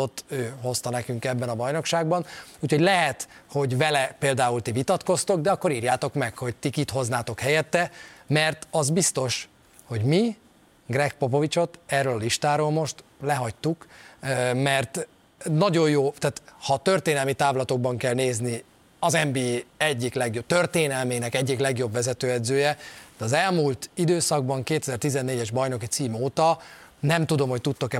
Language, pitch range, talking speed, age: Hungarian, 125-160 Hz, 135 wpm, 30-49